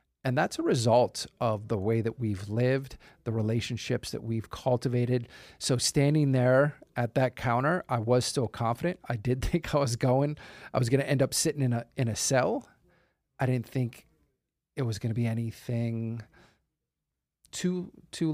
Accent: American